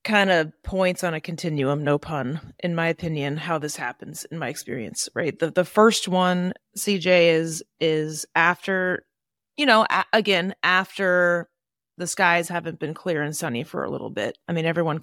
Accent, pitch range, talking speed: American, 155-190 Hz, 175 wpm